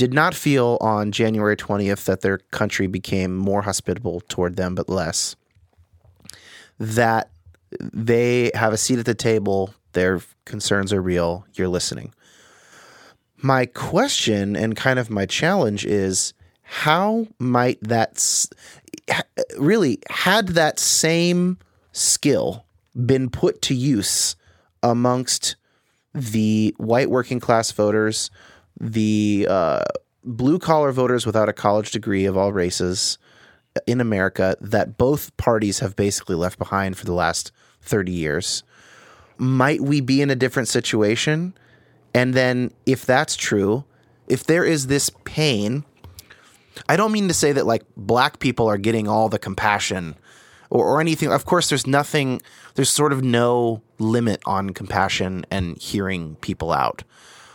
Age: 30-49